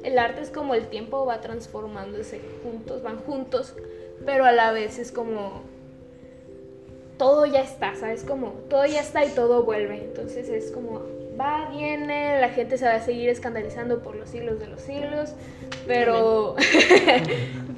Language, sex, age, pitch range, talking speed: Spanish, female, 10-29, 220-290 Hz, 160 wpm